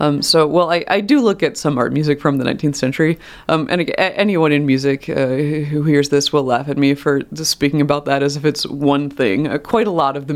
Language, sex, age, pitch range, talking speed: English, female, 30-49, 140-160 Hz, 260 wpm